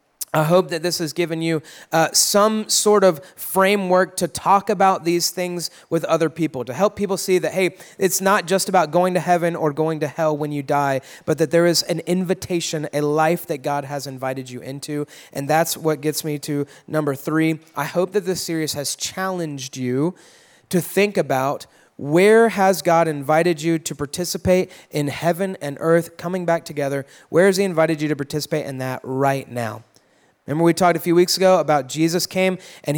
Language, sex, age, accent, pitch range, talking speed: English, male, 30-49, American, 150-180 Hz, 200 wpm